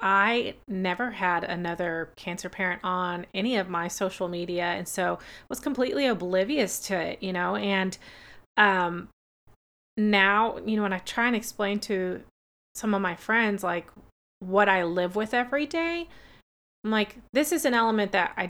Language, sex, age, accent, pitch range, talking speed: English, female, 30-49, American, 185-225 Hz, 165 wpm